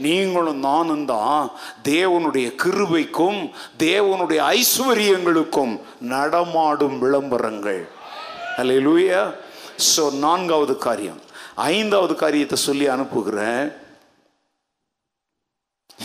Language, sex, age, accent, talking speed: Tamil, male, 50-69, native, 55 wpm